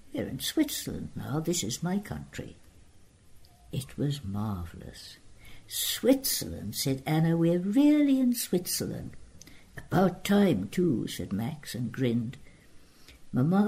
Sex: female